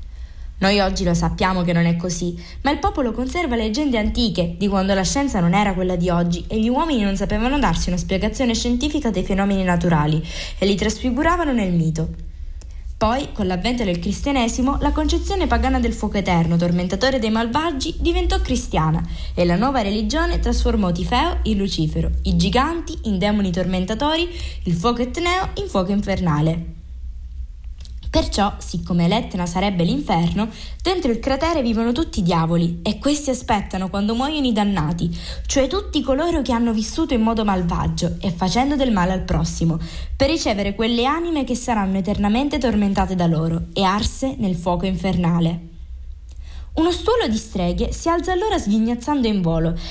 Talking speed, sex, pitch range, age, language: 160 wpm, female, 175-250 Hz, 20-39, Italian